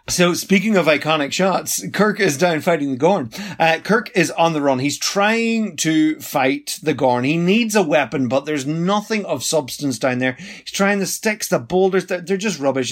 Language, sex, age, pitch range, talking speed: English, male, 30-49, 135-180 Hz, 200 wpm